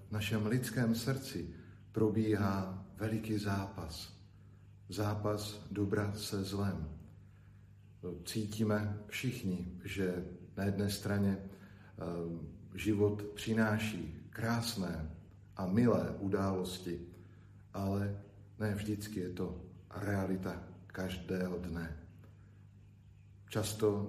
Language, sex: Slovak, male